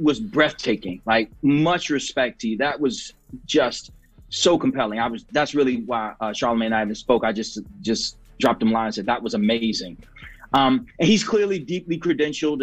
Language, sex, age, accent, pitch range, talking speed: English, male, 30-49, American, 130-170 Hz, 190 wpm